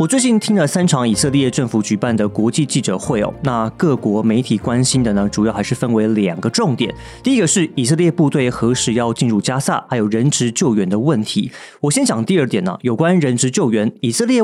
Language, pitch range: Chinese, 115-160 Hz